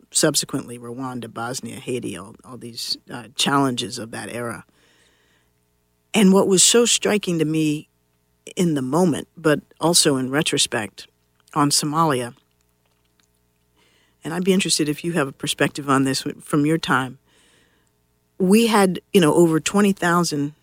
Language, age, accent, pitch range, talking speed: English, 50-69, American, 115-170 Hz, 140 wpm